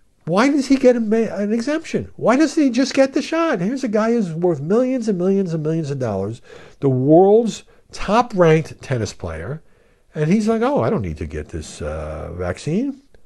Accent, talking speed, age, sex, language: American, 195 wpm, 60-79, male, English